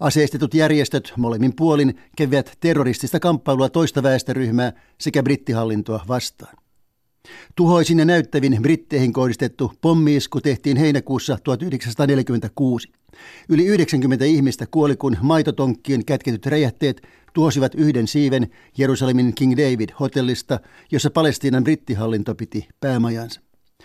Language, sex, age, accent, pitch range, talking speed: Finnish, male, 60-79, native, 125-150 Hz, 100 wpm